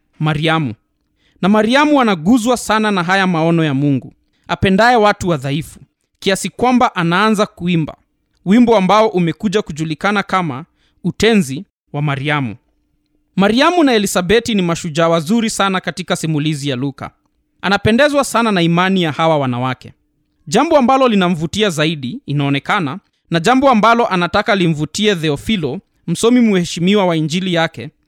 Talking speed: 130 wpm